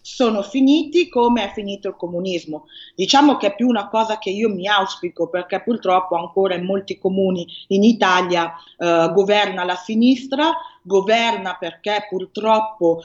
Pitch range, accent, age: 180-230 Hz, native, 30-49